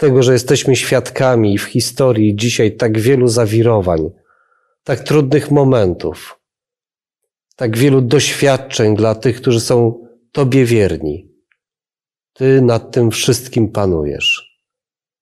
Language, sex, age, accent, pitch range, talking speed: Polish, male, 40-59, native, 115-140 Hz, 105 wpm